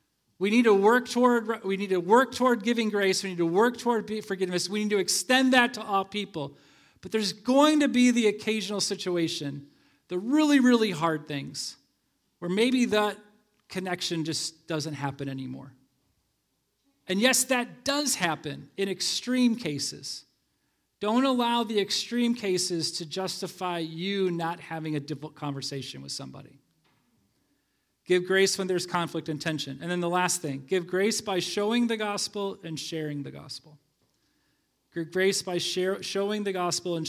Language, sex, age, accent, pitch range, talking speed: English, male, 40-59, American, 165-225 Hz, 155 wpm